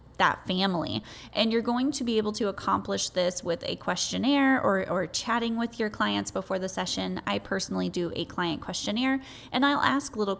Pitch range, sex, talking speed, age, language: 180-215 Hz, female, 190 wpm, 20-39, English